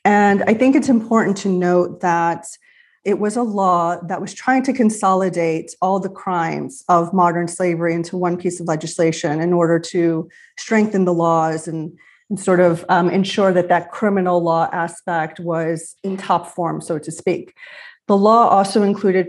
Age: 30-49